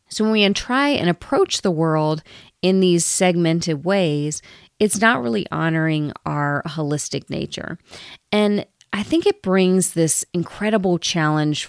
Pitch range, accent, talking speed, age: 155-205 Hz, American, 140 wpm, 30-49